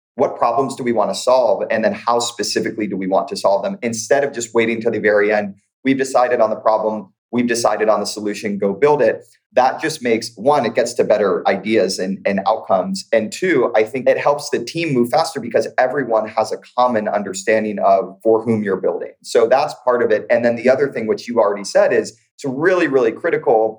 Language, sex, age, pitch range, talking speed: English, male, 30-49, 105-130 Hz, 225 wpm